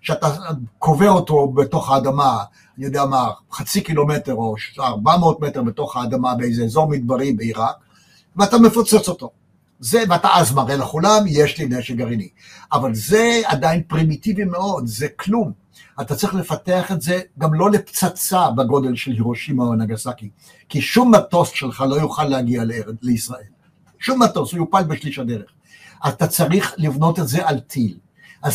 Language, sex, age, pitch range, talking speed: Hebrew, male, 60-79, 135-180 Hz, 155 wpm